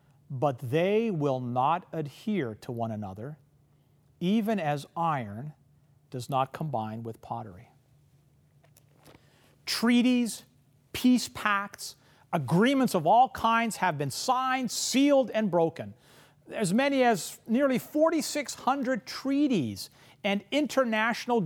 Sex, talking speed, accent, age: male, 105 wpm, American, 40-59